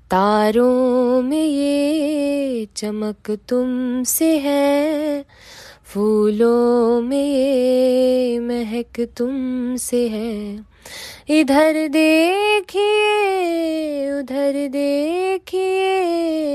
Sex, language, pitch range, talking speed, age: female, Hindi, 245-320 Hz, 60 wpm, 20-39